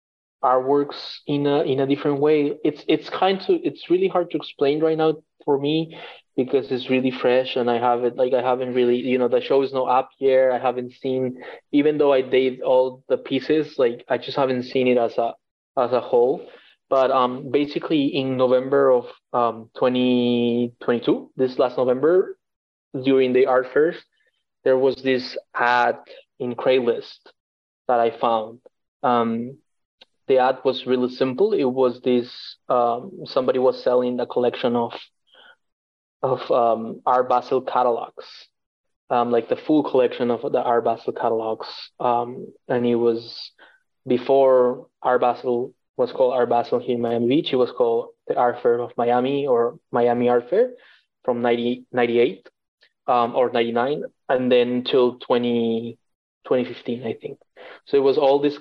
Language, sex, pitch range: English, male, 120-140 Hz